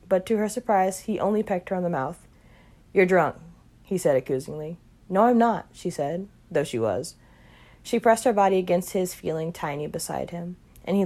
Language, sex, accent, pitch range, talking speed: English, female, American, 160-195 Hz, 195 wpm